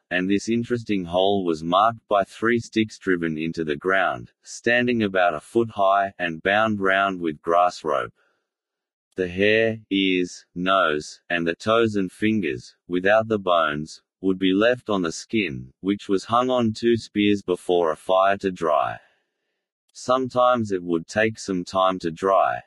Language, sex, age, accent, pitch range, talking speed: English, male, 30-49, Australian, 85-110 Hz, 160 wpm